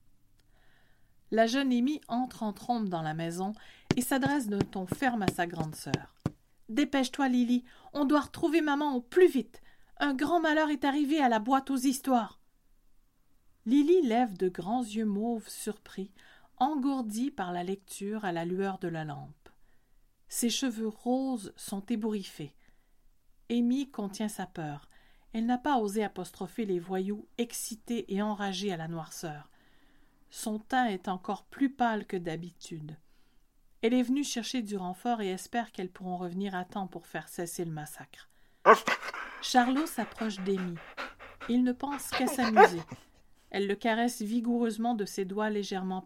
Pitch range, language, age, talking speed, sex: 180-255 Hz, French, 50-69, 155 wpm, female